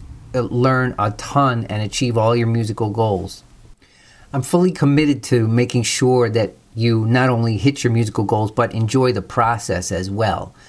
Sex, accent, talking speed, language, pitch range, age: male, American, 165 wpm, English, 110-135 Hz, 40-59